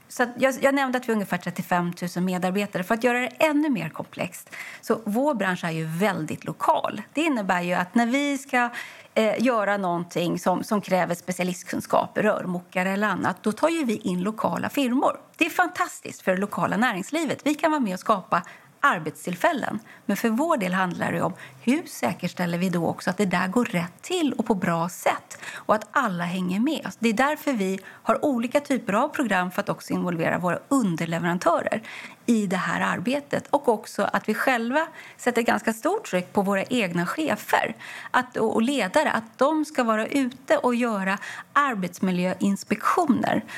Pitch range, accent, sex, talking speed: 190-290 Hz, native, female, 180 wpm